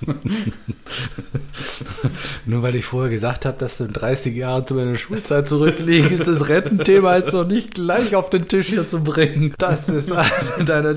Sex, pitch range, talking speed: male, 120-155 Hz, 170 wpm